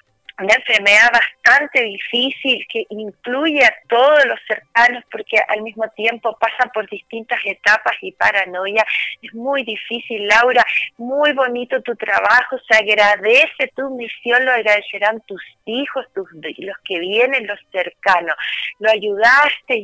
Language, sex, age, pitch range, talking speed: Spanish, female, 30-49, 200-250 Hz, 135 wpm